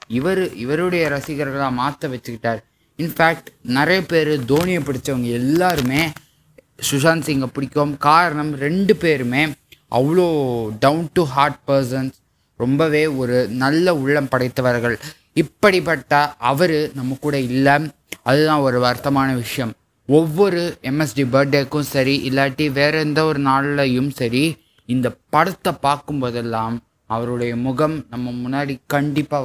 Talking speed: 110 wpm